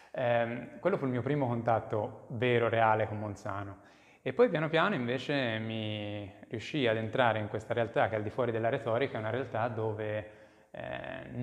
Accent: native